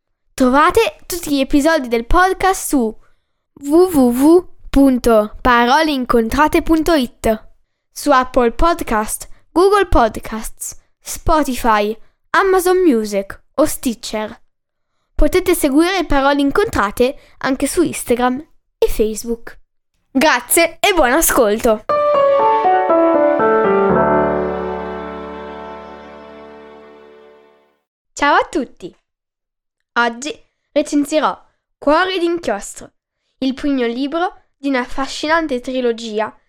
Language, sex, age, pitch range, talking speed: Italian, female, 10-29, 225-315 Hz, 75 wpm